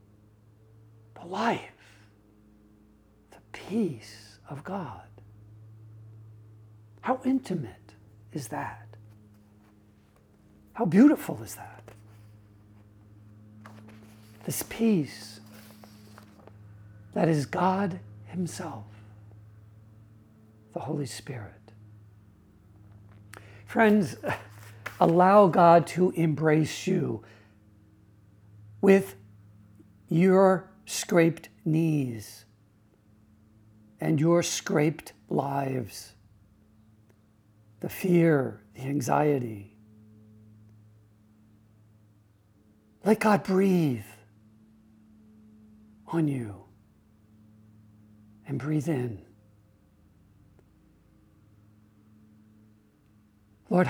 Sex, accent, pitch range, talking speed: male, American, 105-140 Hz, 55 wpm